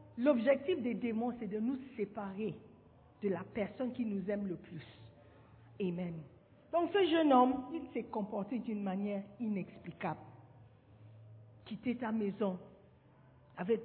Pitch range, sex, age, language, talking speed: 140-235 Hz, female, 50-69, French, 130 wpm